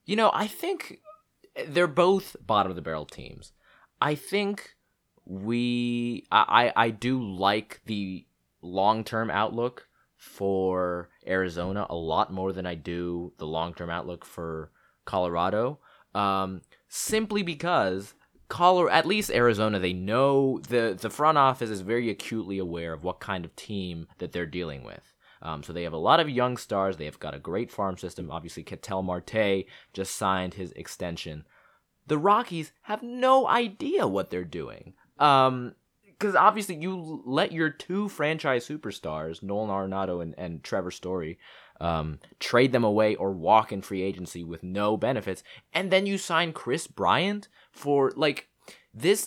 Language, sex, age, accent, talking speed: English, male, 20-39, American, 150 wpm